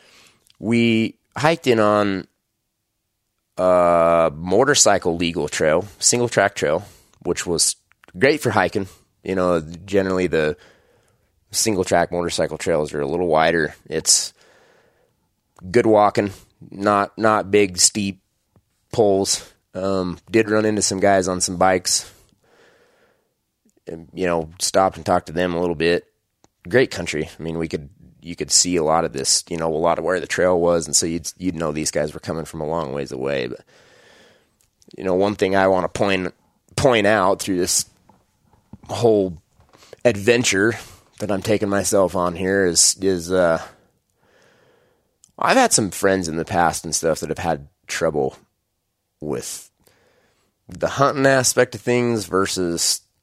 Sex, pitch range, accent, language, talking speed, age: male, 85-105 Hz, American, English, 155 wpm, 20-39